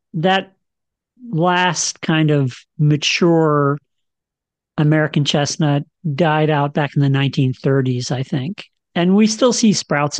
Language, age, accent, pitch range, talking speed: English, 40-59, American, 145-185 Hz, 120 wpm